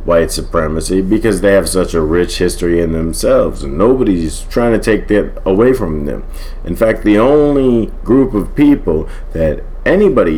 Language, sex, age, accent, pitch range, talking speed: English, male, 50-69, American, 75-105 Hz, 170 wpm